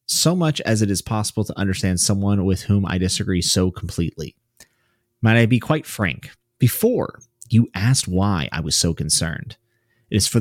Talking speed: 180 wpm